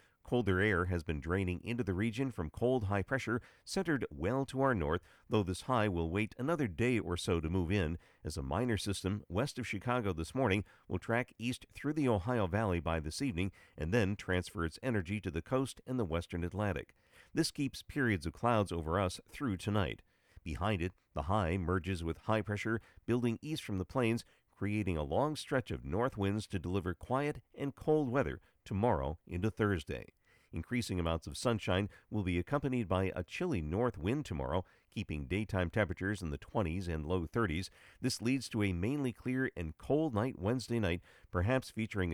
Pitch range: 90-120 Hz